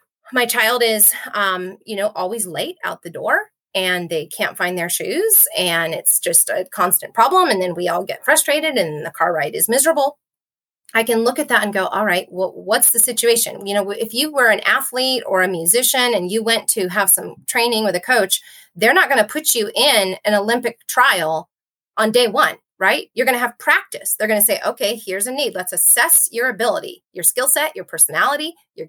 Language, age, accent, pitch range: English, 30-49, American, 190-260 Hz